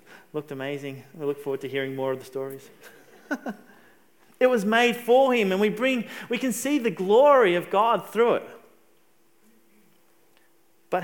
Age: 30-49